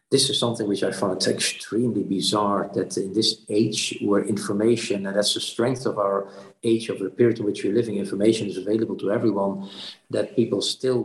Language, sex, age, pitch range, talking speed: English, male, 50-69, 100-120 Hz, 195 wpm